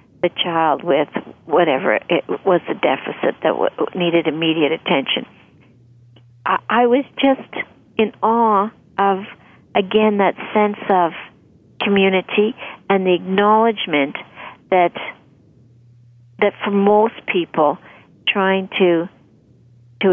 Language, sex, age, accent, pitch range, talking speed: English, female, 60-79, American, 155-195 Hz, 95 wpm